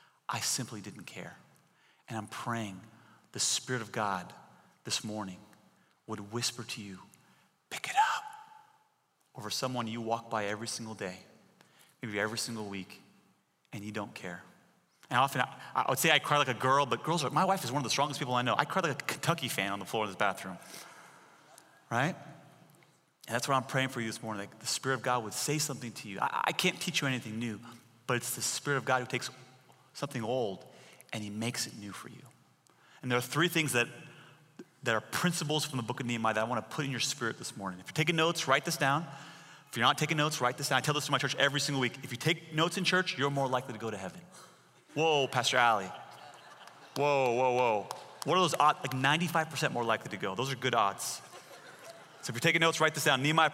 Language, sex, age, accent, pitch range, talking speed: English, male, 30-49, American, 115-155 Hz, 230 wpm